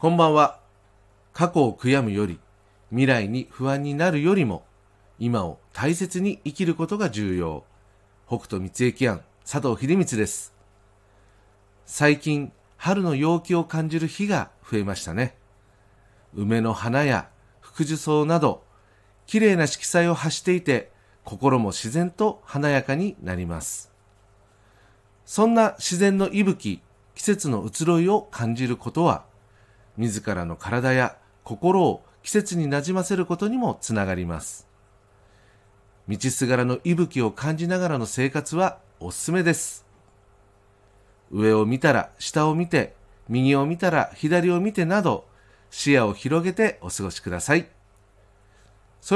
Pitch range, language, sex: 100-165 Hz, Japanese, male